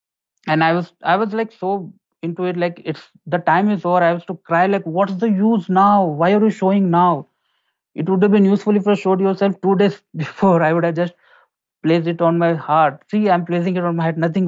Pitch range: 135-180 Hz